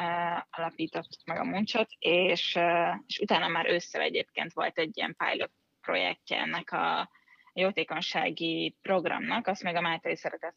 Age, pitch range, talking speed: 20-39, 165-190 Hz, 135 wpm